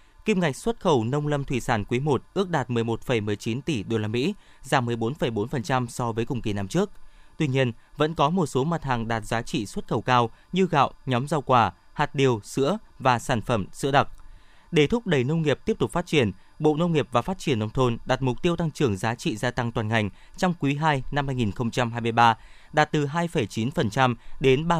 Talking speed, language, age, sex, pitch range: 205 wpm, Vietnamese, 20-39, male, 120-155 Hz